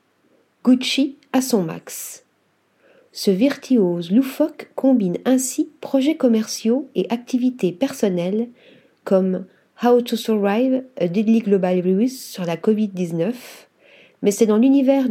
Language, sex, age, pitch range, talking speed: French, female, 40-59, 200-260 Hz, 115 wpm